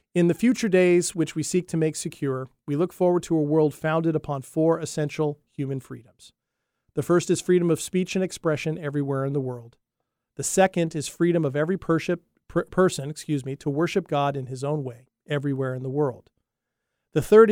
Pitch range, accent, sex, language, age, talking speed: 140-170 Hz, American, male, English, 40-59, 190 wpm